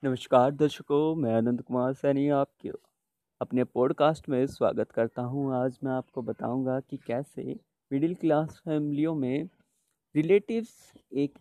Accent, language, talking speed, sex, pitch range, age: native, Hindi, 130 wpm, male, 130-170 Hz, 30-49